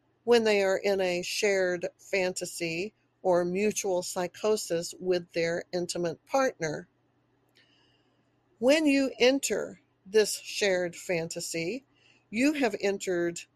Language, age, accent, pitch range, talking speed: English, 50-69, American, 180-235 Hz, 100 wpm